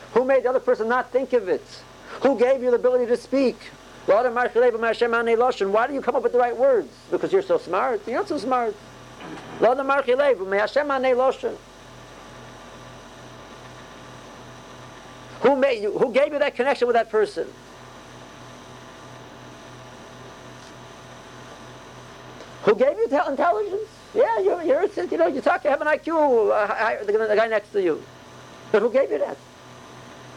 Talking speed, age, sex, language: 140 wpm, 50-69, male, English